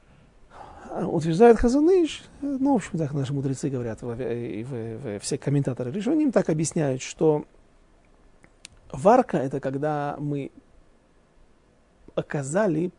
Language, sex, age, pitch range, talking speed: Russian, male, 40-59, 145-185 Hz, 105 wpm